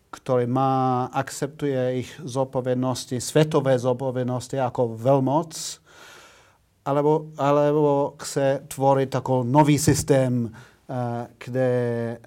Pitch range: 125-145 Hz